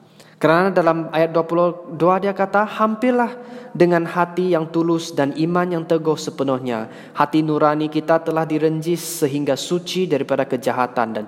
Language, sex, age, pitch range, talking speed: Malay, male, 20-39, 135-175 Hz, 140 wpm